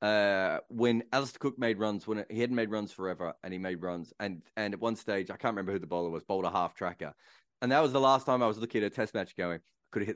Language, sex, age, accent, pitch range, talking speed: English, male, 30-49, Australian, 105-160 Hz, 290 wpm